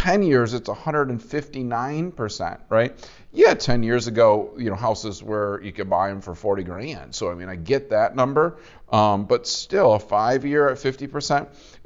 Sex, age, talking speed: male, 40-59, 185 wpm